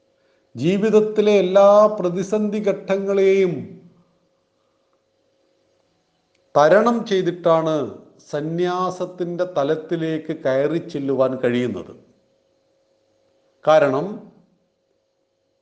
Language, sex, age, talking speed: Malayalam, male, 40-59, 45 wpm